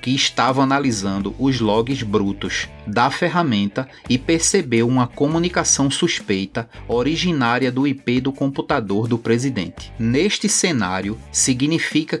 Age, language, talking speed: 20-39, Portuguese, 115 wpm